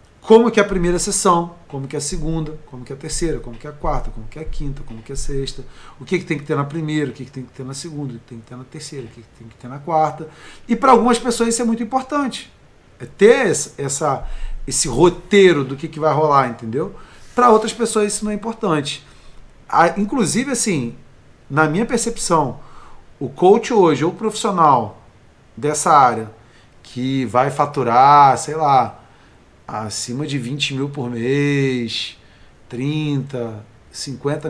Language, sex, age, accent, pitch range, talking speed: Portuguese, male, 40-59, Brazilian, 125-200 Hz, 200 wpm